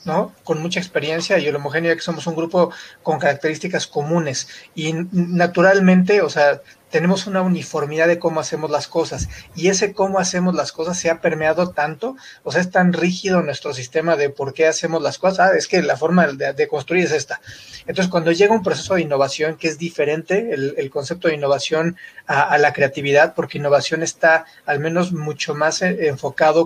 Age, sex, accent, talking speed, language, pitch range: 40-59, male, Mexican, 190 wpm, Spanish, 150-180 Hz